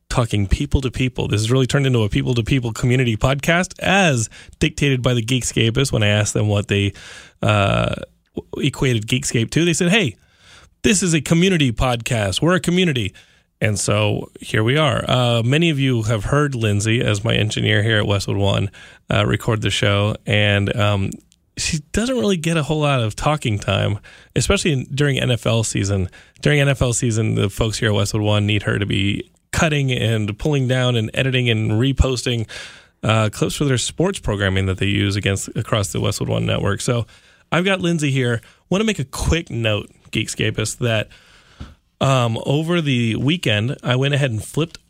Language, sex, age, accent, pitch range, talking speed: English, male, 20-39, American, 105-140 Hz, 180 wpm